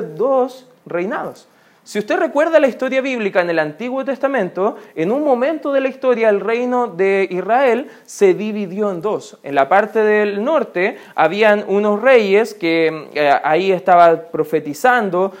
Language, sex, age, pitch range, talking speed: Spanish, male, 20-39, 175-235 Hz, 150 wpm